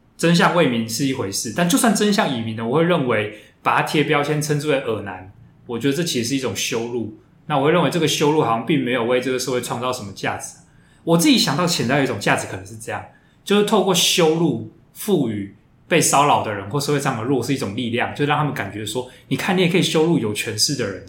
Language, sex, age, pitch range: Chinese, male, 20-39, 115-150 Hz